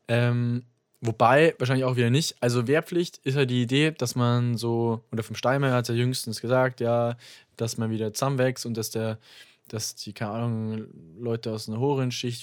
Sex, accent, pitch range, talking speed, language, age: male, German, 115-135 Hz, 195 wpm, German, 20-39